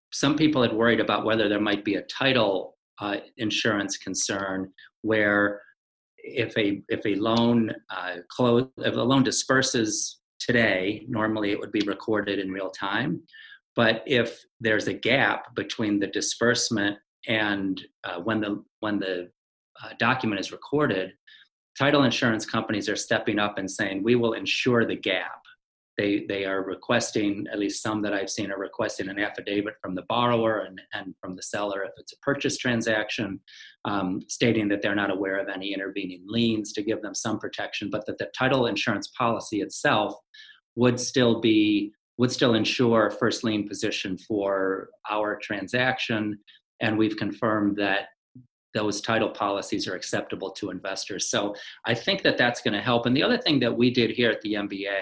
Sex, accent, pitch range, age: male, American, 100-115 Hz, 40-59